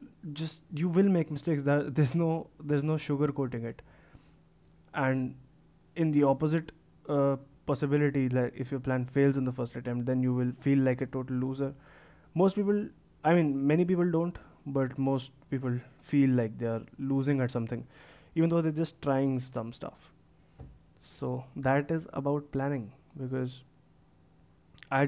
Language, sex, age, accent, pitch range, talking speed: English, male, 20-39, Indian, 130-145 Hz, 160 wpm